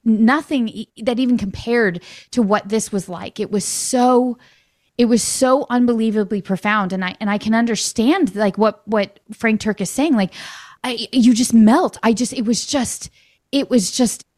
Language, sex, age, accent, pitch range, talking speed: English, female, 20-39, American, 195-235 Hz, 180 wpm